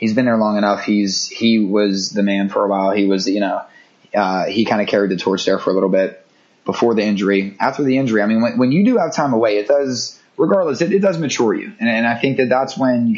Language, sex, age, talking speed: English, male, 20-39, 275 wpm